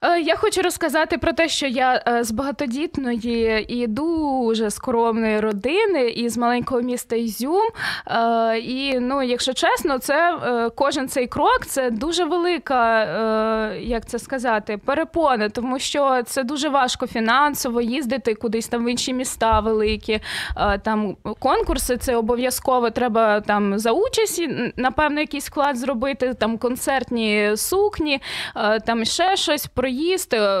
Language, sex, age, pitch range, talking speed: Ukrainian, female, 20-39, 230-280 Hz, 130 wpm